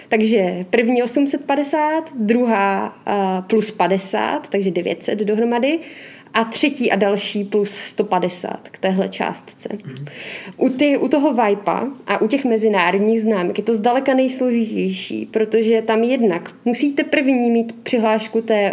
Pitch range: 210-255 Hz